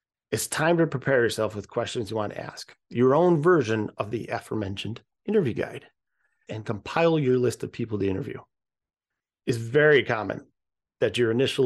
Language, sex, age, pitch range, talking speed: English, male, 40-59, 110-140 Hz, 165 wpm